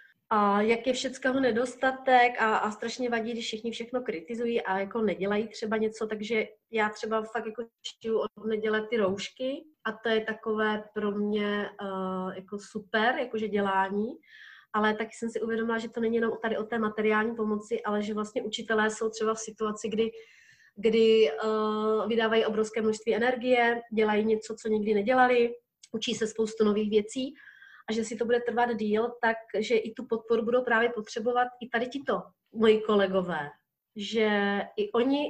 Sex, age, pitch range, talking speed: female, 30-49, 210-230 Hz, 170 wpm